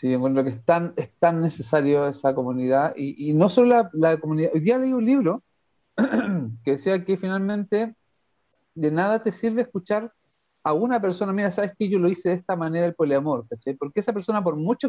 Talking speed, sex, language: 205 wpm, male, Spanish